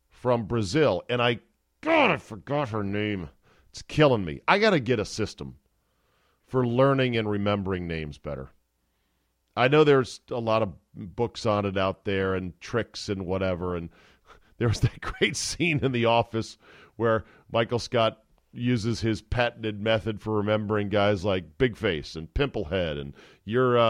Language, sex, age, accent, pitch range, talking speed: English, male, 40-59, American, 95-125 Hz, 165 wpm